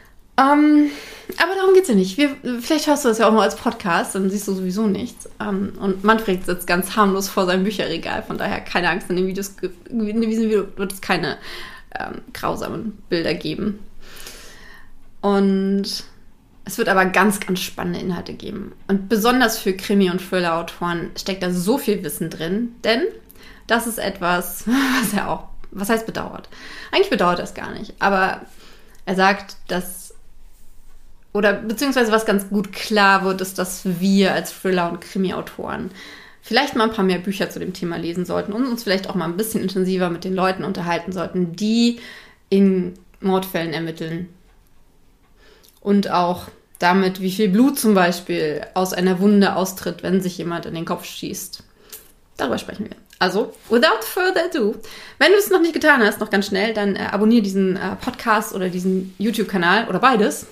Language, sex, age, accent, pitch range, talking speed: German, female, 20-39, German, 185-220 Hz, 170 wpm